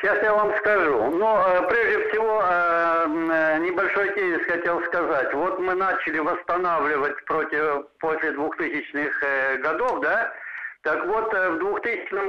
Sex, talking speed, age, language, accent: male, 115 wpm, 60-79, Russian, native